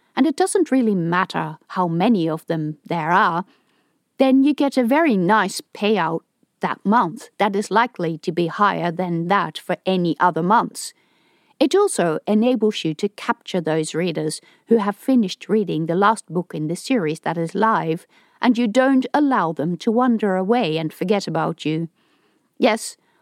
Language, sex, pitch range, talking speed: English, female, 170-250 Hz, 170 wpm